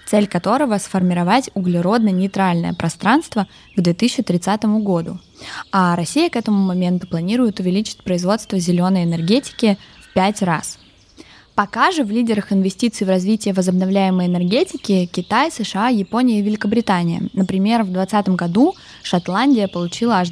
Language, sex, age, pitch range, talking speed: Russian, female, 20-39, 180-215 Hz, 125 wpm